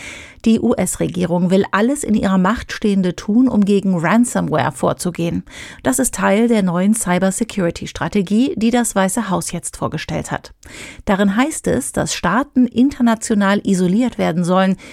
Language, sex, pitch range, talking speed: German, female, 185-240 Hz, 140 wpm